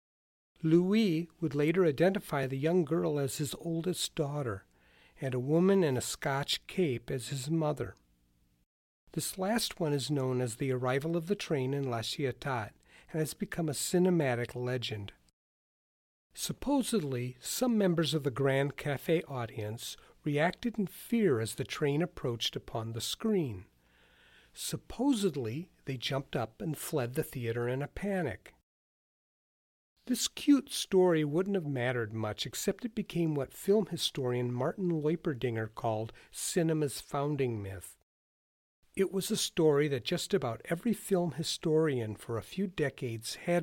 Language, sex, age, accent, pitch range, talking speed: English, male, 50-69, American, 120-175 Hz, 145 wpm